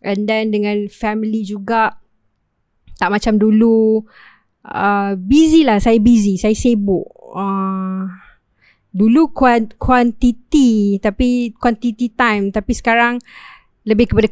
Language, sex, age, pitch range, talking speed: Malay, female, 20-39, 210-245 Hz, 105 wpm